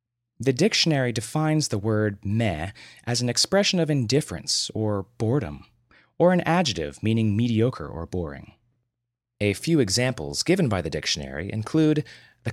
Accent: American